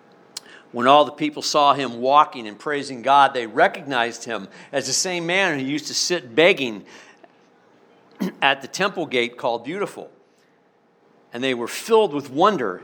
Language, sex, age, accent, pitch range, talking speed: English, male, 50-69, American, 110-135 Hz, 160 wpm